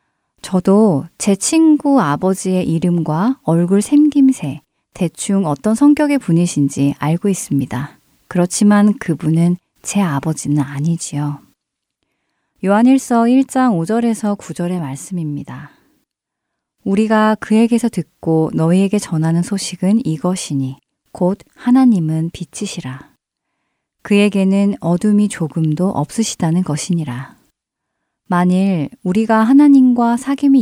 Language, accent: Korean, native